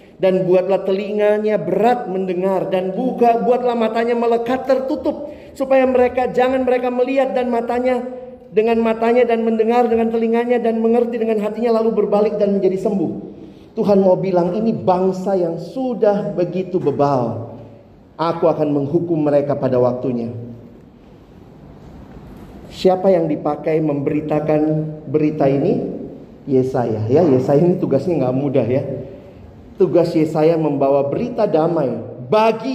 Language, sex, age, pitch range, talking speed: Indonesian, male, 40-59, 145-215 Hz, 125 wpm